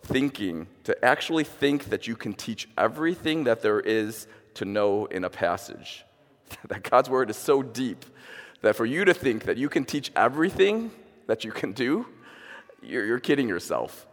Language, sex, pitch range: English, male, 100-155 Hz